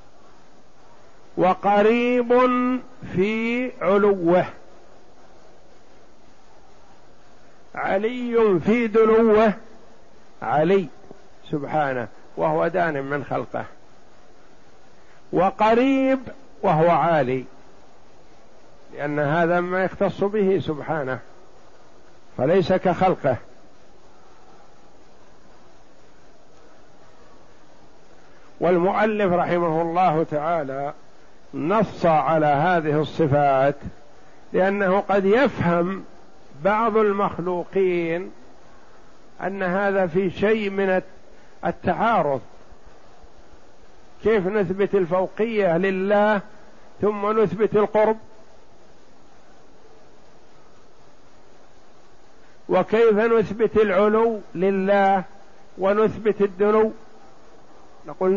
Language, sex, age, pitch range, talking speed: Arabic, male, 50-69, 175-215 Hz, 60 wpm